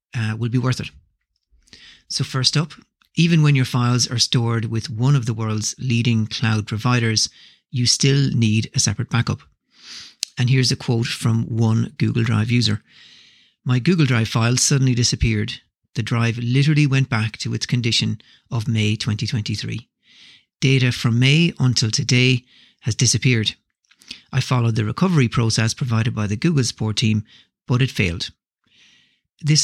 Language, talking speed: English, 155 wpm